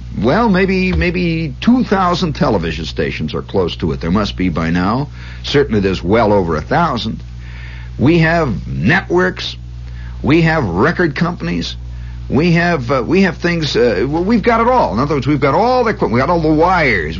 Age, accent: 60-79, American